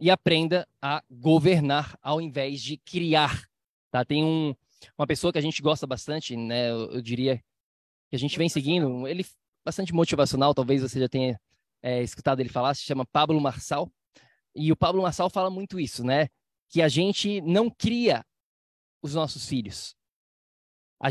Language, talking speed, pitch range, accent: Portuguese, 170 wpm, 135-175 Hz, Brazilian